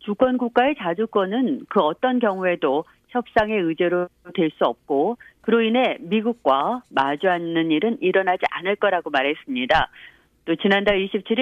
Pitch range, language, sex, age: 180-240 Hz, Korean, female, 40-59